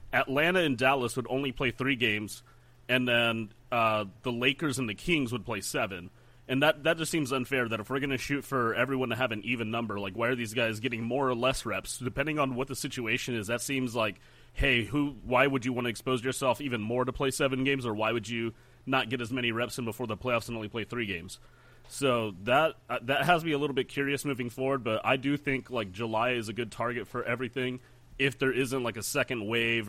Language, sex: English, male